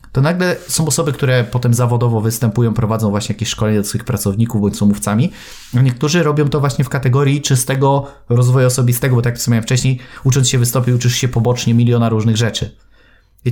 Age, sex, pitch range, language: 30-49, male, 110-130 Hz, Polish